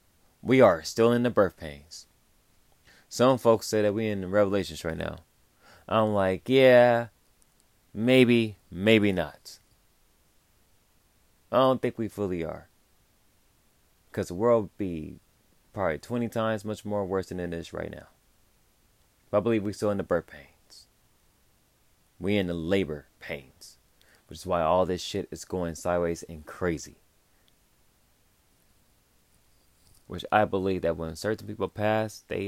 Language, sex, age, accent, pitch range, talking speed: English, male, 20-39, American, 80-105 Hz, 145 wpm